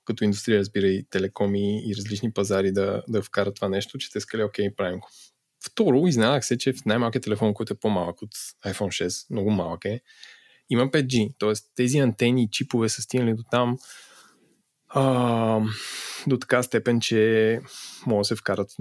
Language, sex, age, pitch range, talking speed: Bulgarian, male, 20-39, 105-130 Hz, 180 wpm